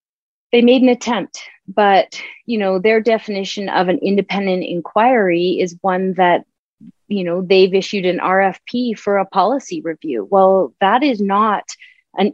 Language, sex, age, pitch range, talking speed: English, female, 30-49, 175-225 Hz, 150 wpm